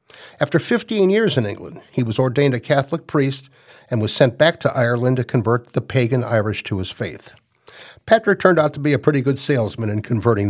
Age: 50-69